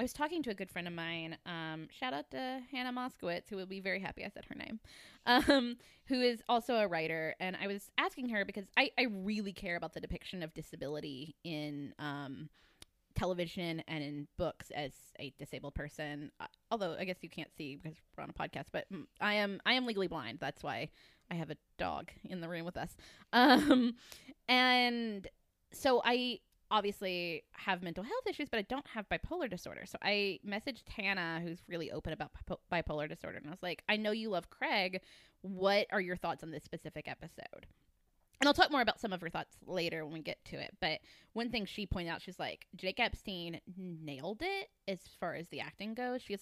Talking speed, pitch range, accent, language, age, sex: 210 wpm, 160-215 Hz, American, English, 20-39, female